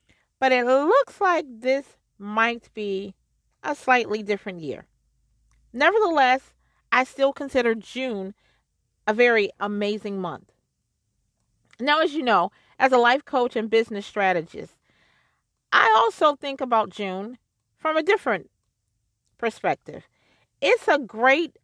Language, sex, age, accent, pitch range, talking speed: English, female, 40-59, American, 190-265 Hz, 120 wpm